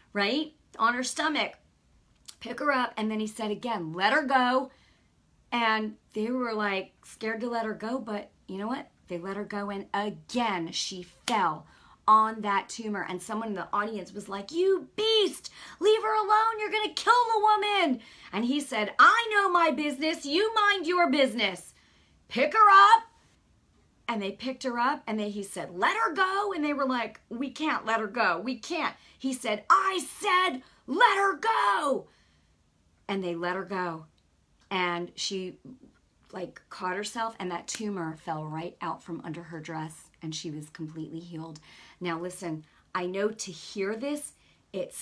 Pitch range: 195-290 Hz